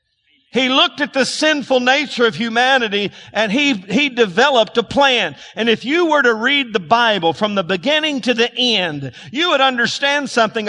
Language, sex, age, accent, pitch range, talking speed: English, male, 50-69, American, 185-250 Hz, 180 wpm